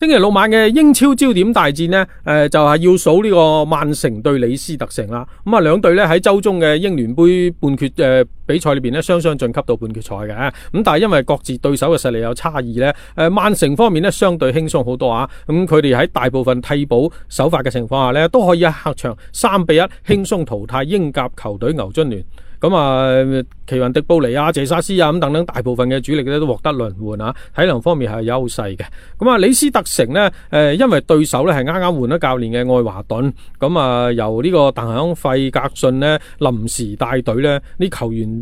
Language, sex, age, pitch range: Chinese, male, 40-59, 125-165 Hz